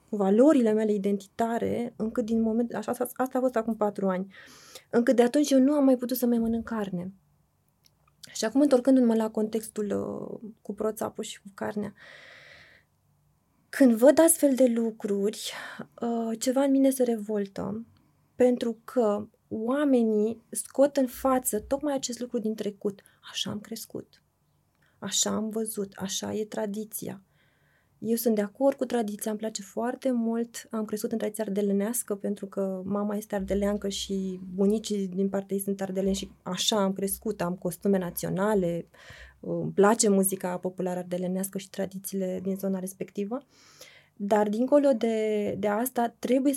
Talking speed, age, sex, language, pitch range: 150 wpm, 20-39, female, Romanian, 195-235 Hz